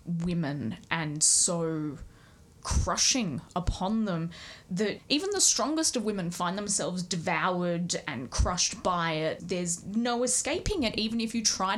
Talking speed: 140 wpm